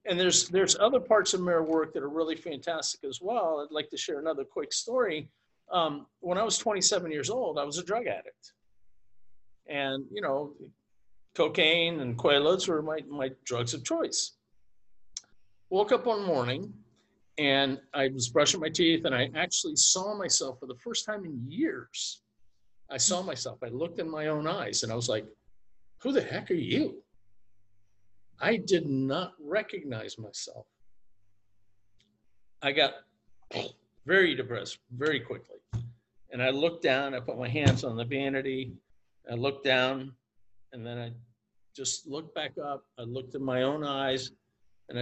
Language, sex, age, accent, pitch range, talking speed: English, male, 50-69, American, 115-160 Hz, 165 wpm